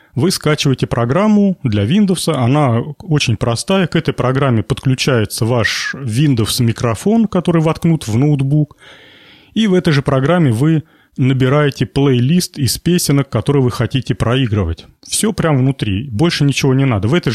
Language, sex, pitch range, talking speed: Russian, male, 120-160 Hz, 140 wpm